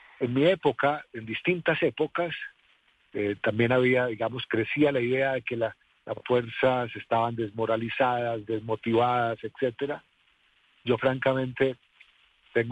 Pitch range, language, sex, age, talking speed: 110-135 Hz, Spanish, male, 50-69, 120 wpm